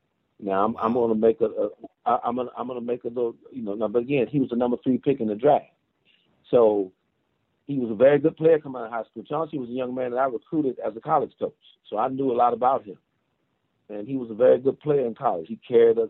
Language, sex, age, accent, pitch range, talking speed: English, male, 40-59, American, 105-135 Hz, 275 wpm